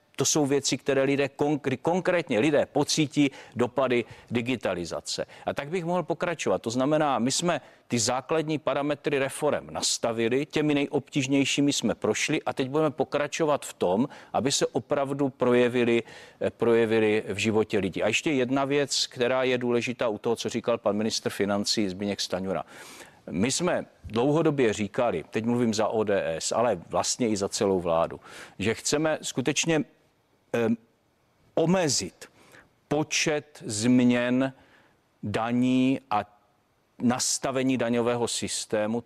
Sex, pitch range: male, 115-145 Hz